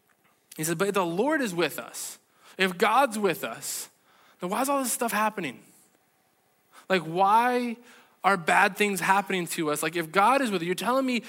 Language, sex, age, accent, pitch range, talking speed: English, male, 20-39, American, 170-215 Hz, 200 wpm